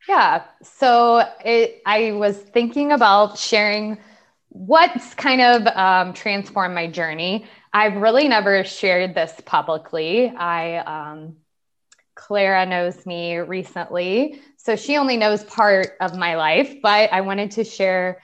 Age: 20-39